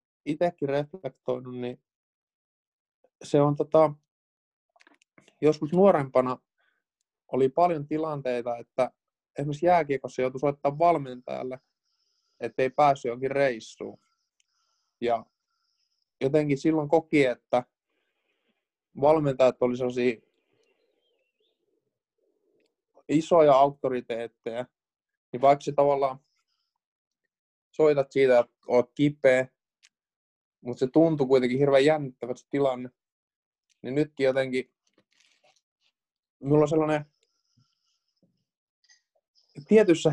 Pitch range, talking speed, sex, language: 130-180 Hz, 80 wpm, male, Finnish